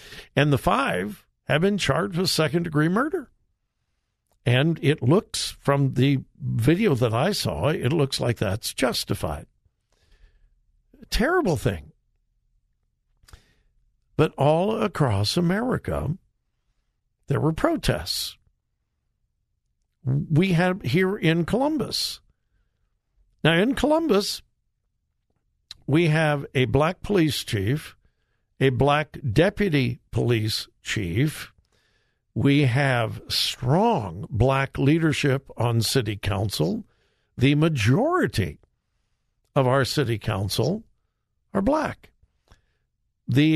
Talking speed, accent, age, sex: 95 wpm, American, 60-79, male